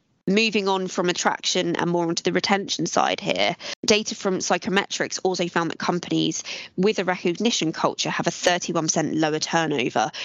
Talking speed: 160 wpm